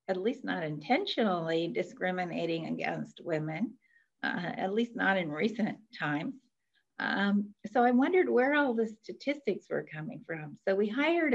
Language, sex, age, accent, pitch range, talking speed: English, female, 50-69, American, 180-225 Hz, 150 wpm